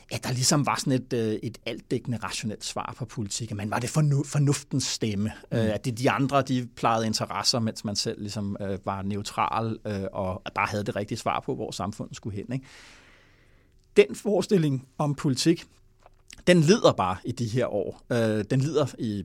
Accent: Danish